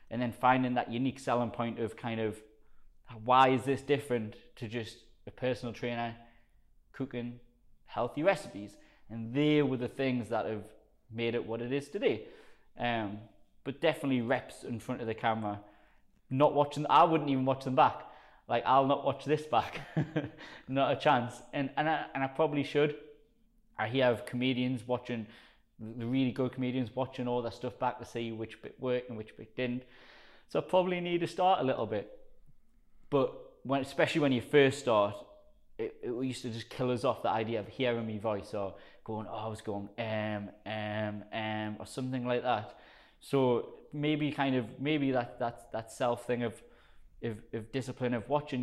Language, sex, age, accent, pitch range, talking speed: English, male, 20-39, British, 110-140 Hz, 185 wpm